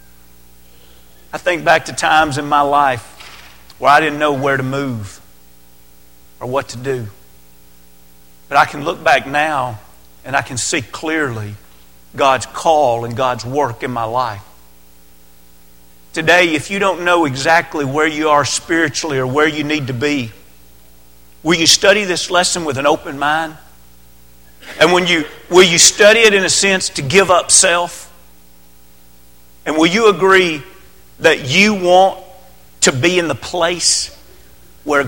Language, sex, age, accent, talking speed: English, male, 50-69, American, 155 wpm